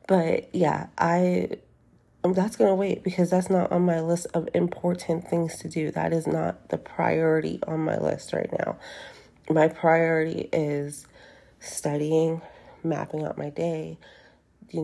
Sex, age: female, 30-49